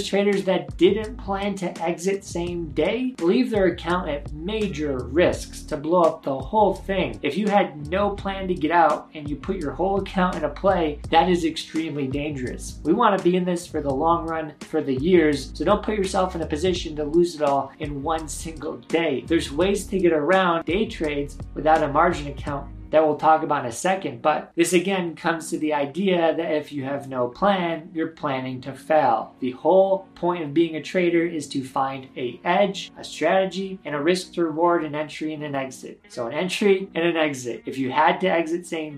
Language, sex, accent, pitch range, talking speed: English, male, American, 150-185 Hz, 215 wpm